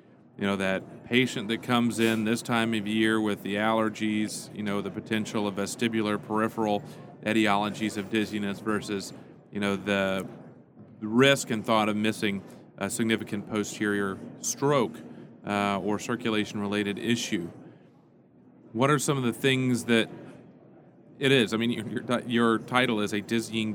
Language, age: English, 40-59